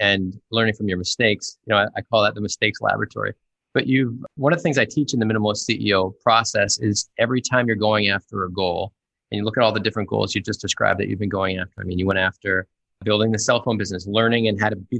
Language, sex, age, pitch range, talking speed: English, male, 20-39, 105-125 Hz, 265 wpm